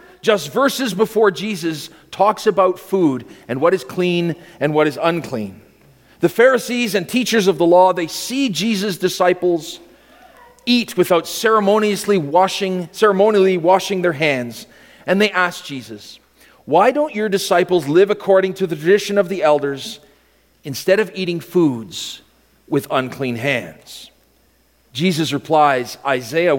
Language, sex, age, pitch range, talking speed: English, male, 40-59, 155-200 Hz, 135 wpm